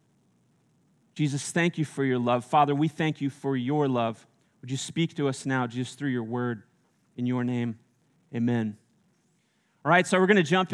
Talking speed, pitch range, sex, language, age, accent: 190 wpm, 140-180 Hz, male, English, 30-49, American